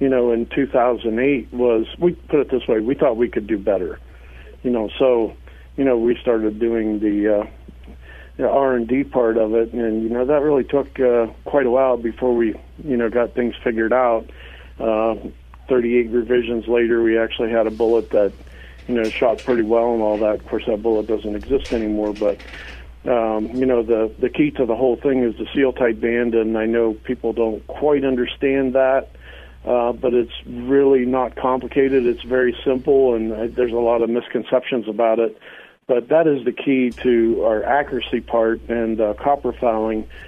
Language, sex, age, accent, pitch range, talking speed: English, male, 50-69, American, 110-125 Hz, 190 wpm